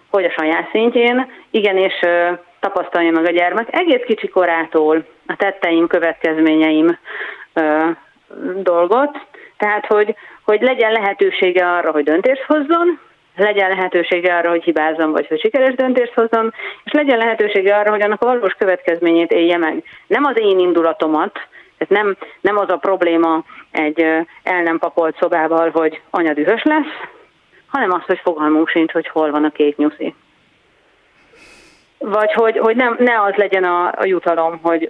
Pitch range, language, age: 165-220 Hz, Hungarian, 30-49